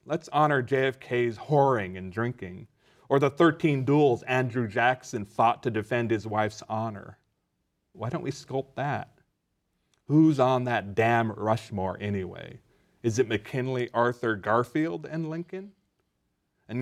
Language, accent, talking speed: English, American, 130 wpm